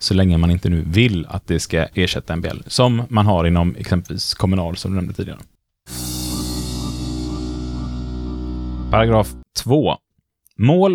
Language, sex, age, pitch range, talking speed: Swedish, male, 30-49, 85-115 Hz, 135 wpm